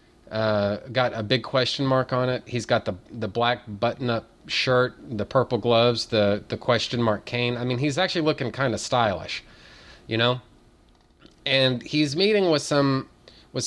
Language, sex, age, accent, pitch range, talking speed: English, male, 30-49, American, 110-140 Hz, 170 wpm